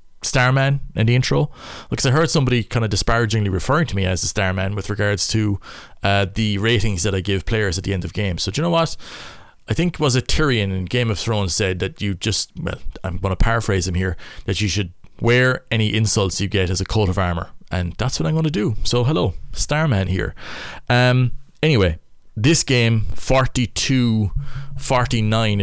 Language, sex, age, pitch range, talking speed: English, male, 30-49, 95-125 Hz, 215 wpm